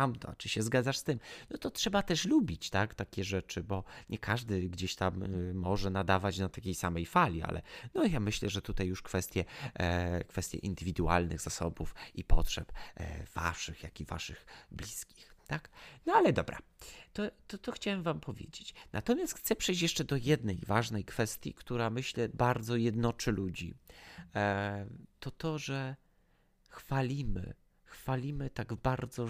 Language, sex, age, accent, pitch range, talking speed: Polish, male, 30-49, native, 95-130 Hz, 140 wpm